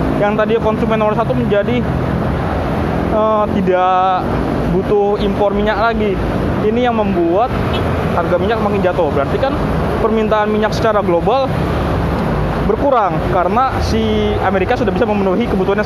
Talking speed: 130 wpm